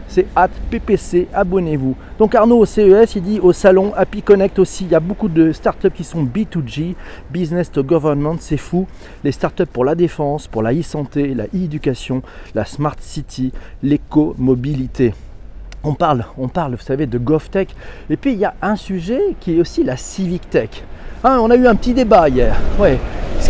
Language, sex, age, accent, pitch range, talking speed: French, male, 40-59, French, 145-210 Hz, 205 wpm